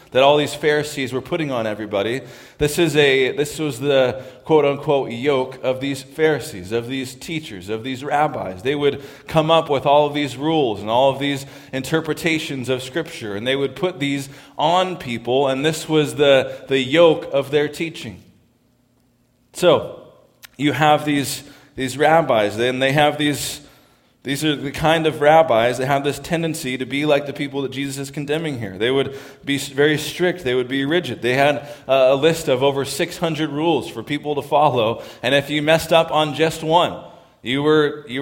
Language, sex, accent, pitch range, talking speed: English, male, American, 130-155 Hz, 190 wpm